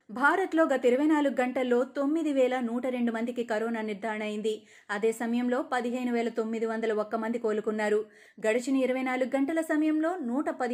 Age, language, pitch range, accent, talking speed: 20-39, Telugu, 225-270 Hz, native, 150 wpm